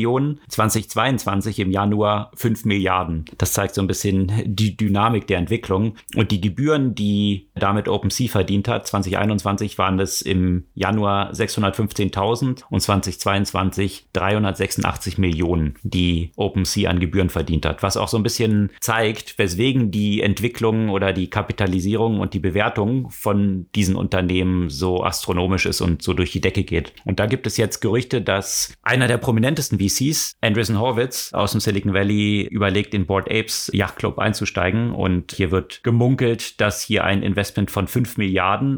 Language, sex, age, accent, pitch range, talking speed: German, male, 40-59, German, 95-110 Hz, 155 wpm